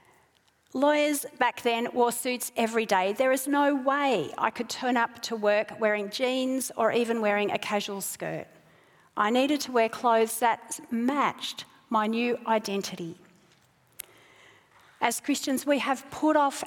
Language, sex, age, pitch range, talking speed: English, female, 50-69, 210-260 Hz, 150 wpm